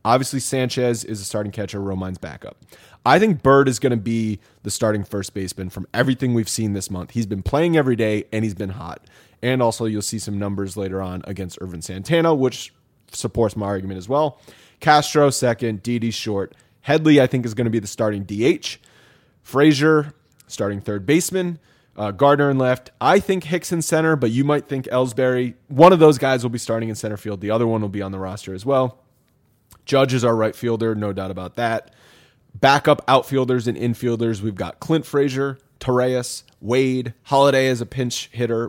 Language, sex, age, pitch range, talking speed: English, male, 20-39, 105-135 Hz, 195 wpm